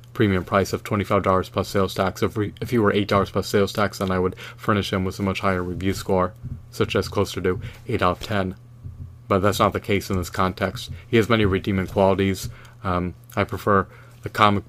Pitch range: 95-120 Hz